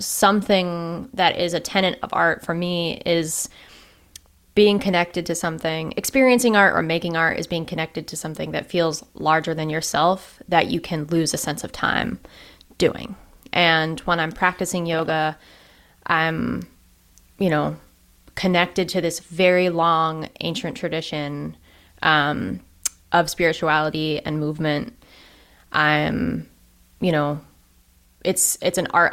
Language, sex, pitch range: English, female, 155-175 Hz